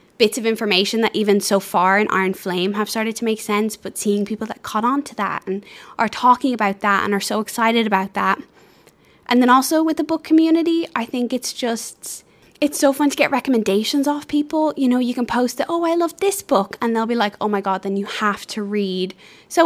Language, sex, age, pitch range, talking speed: English, female, 10-29, 205-255 Hz, 235 wpm